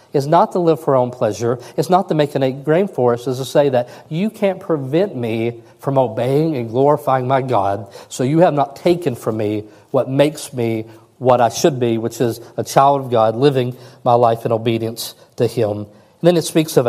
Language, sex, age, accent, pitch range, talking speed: English, male, 50-69, American, 125-160 Hz, 225 wpm